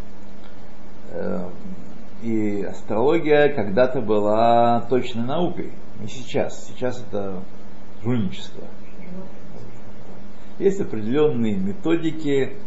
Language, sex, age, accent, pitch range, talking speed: Russian, male, 60-79, native, 100-115 Hz, 65 wpm